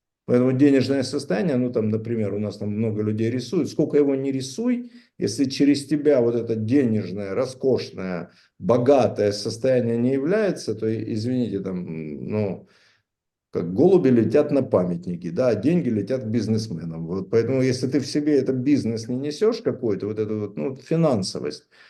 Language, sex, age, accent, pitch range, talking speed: Russian, male, 50-69, native, 115-150 Hz, 160 wpm